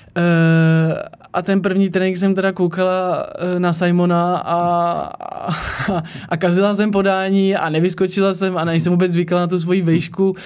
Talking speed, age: 160 wpm, 20-39